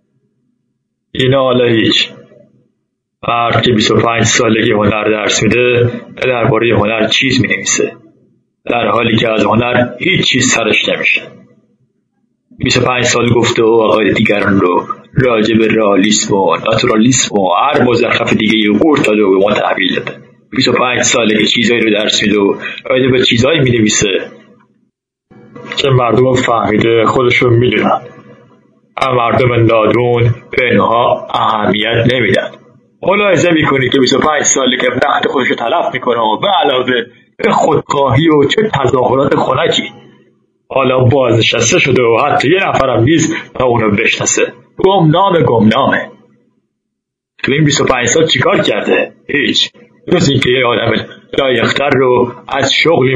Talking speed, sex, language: 140 wpm, male, Persian